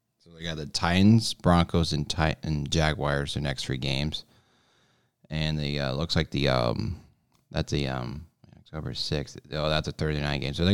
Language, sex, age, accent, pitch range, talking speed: English, male, 20-39, American, 75-85 Hz, 175 wpm